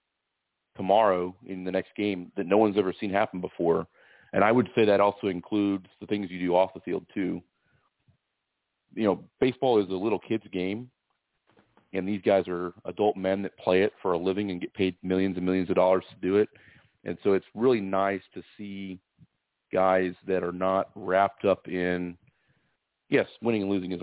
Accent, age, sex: American, 40-59, male